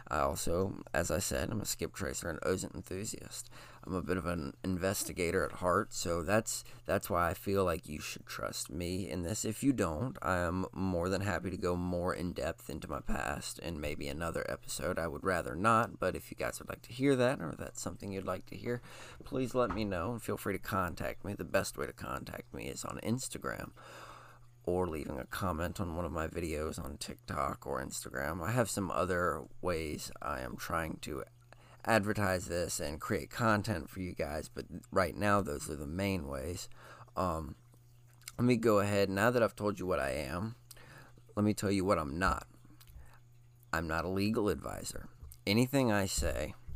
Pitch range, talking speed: 85-110 Hz, 200 wpm